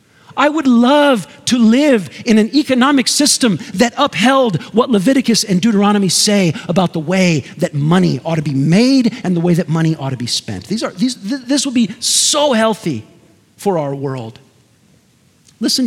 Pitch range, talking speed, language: 180-245 Hz, 180 wpm, English